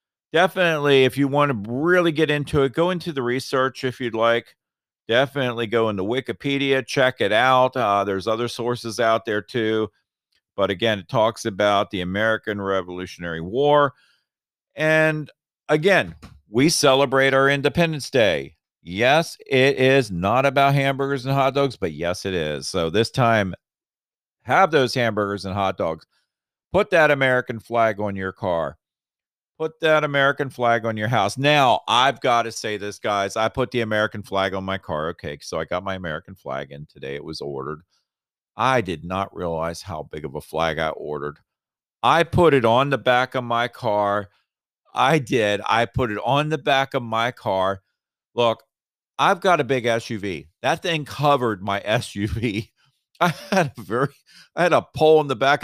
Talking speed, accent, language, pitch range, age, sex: 175 wpm, American, English, 100-140 Hz, 50-69, male